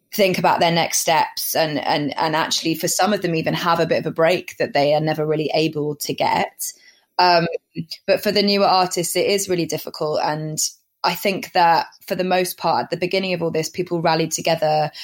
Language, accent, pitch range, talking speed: English, British, 155-180 Hz, 220 wpm